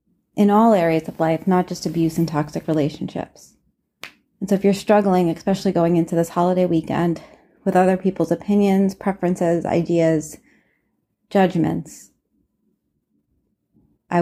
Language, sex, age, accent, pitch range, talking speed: English, female, 30-49, American, 170-195 Hz, 125 wpm